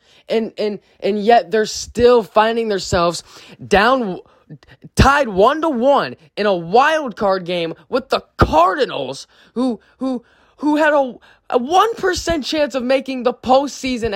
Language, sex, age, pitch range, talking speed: English, male, 20-39, 225-295 Hz, 140 wpm